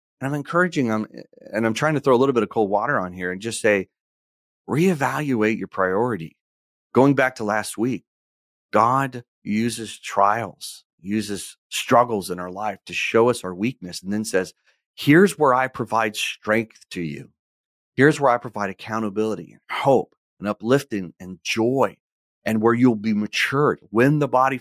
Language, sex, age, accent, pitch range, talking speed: English, male, 40-59, American, 95-135 Hz, 170 wpm